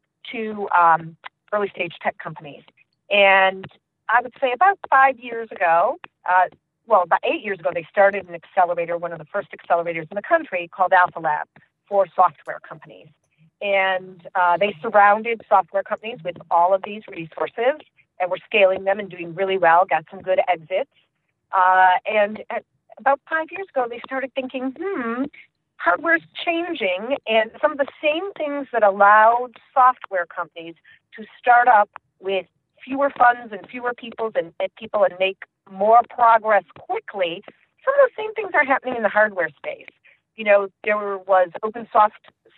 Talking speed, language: 165 wpm, English